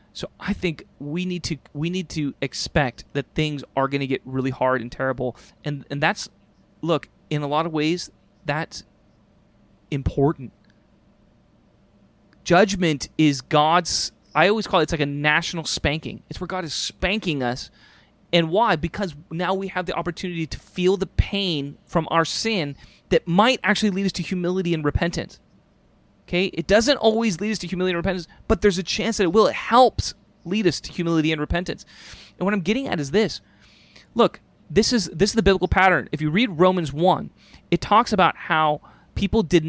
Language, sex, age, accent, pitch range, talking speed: English, male, 30-49, American, 150-190 Hz, 190 wpm